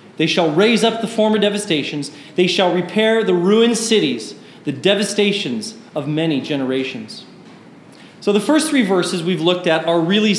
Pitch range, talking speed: 170-220 Hz, 160 wpm